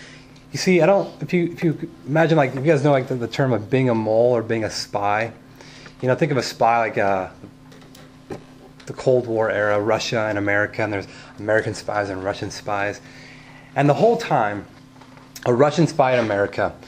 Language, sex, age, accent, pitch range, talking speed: English, male, 30-49, American, 120-135 Hz, 205 wpm